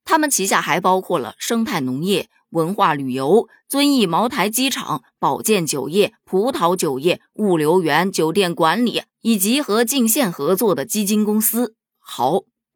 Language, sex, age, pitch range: Chinese, female, 20-39, 170-250 Hz